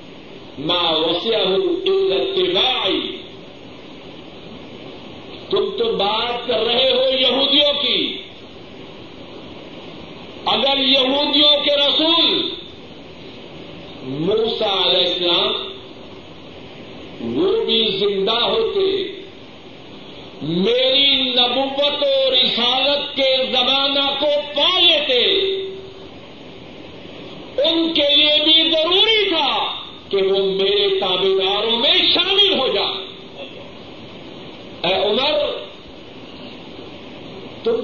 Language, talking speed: Urdu, 70 wpm